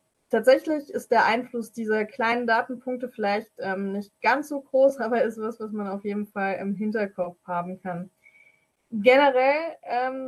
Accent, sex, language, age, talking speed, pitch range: German, female, German, 20-39, 160 wpm, 205-250 Hz